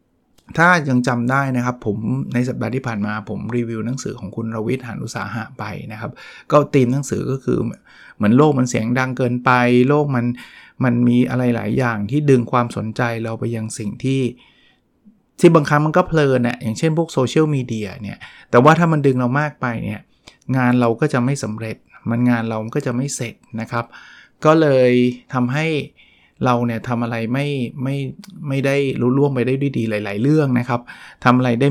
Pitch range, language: 120-140 Hz, Thai